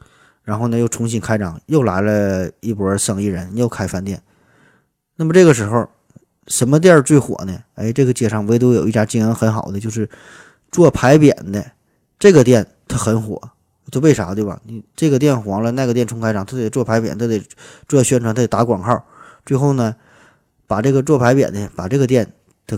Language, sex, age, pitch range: Chinese, male, 20-39, 105-135 Hz